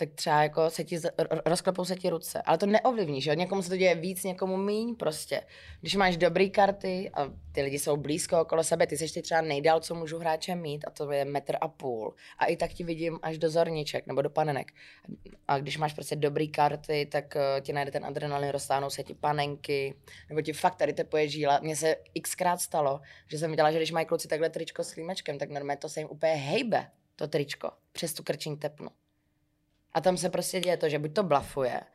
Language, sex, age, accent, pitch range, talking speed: Czech, female, 20-39, native, 145-175 Hz, 220 wpm